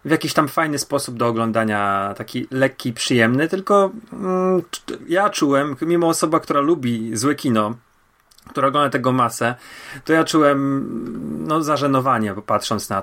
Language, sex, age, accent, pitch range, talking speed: Polish, male, 30-49, native, 115-145 Hz, 140 wpm